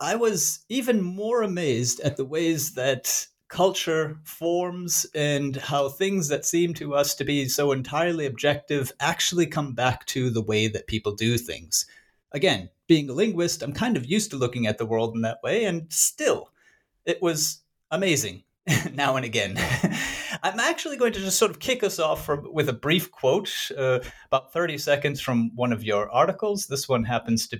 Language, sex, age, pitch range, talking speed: English, male, 30-49, 120-170 Hz, 185 wpm